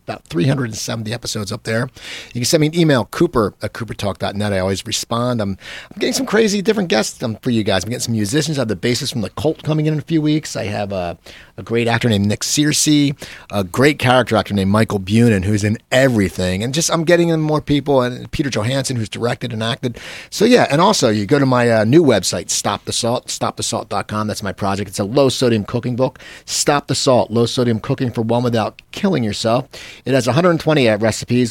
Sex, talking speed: male, 215 wpm